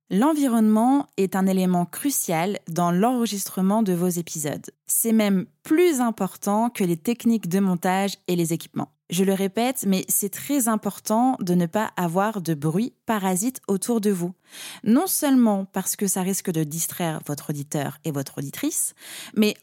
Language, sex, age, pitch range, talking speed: French, female, 20-39, 175-235 Hz, 160 wpm